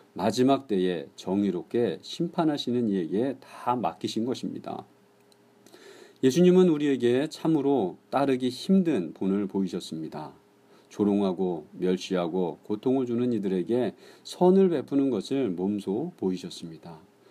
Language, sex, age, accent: Korean, male, 40-59, native